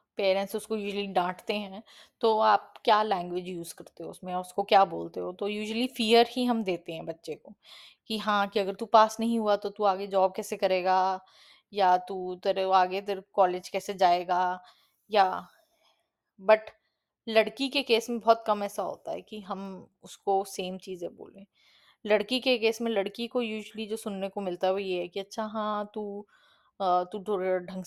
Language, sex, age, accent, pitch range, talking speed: Hindi, female, 20-39, native, 185-210 Hz, 185 wpm